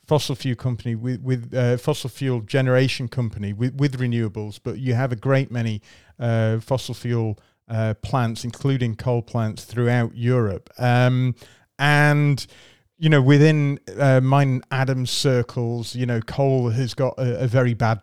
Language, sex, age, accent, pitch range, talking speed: English, male, 30-49, British, 115-135 Hz, 155 wpm